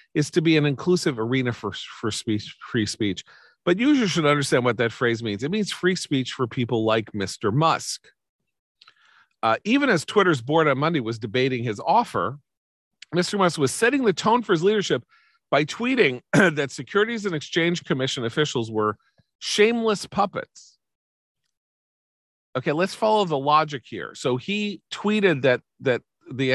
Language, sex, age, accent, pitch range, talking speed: English, male, 40-59, American, 135-220 Hz, 160 wpm